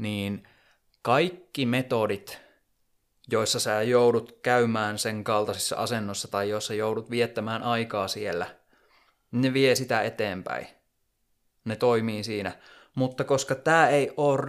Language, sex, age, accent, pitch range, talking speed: Finnish, male, 20-39, native, 110-130 Hz, 115 wpm